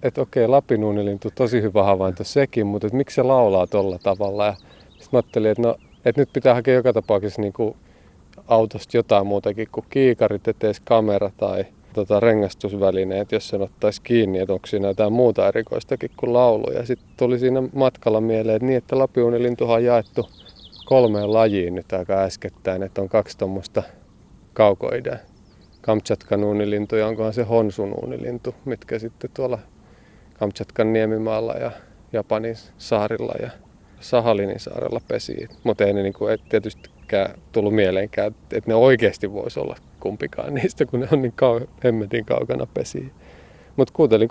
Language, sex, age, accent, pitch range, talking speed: Finnish, male, 30-49, native, 100-120 Hz, 145 wpm